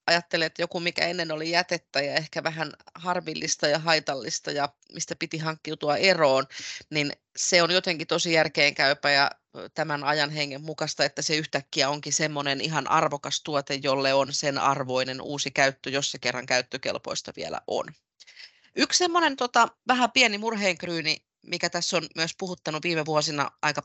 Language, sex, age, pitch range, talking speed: Finnish, female, 30-49, 145-170 Hz, 160 wpm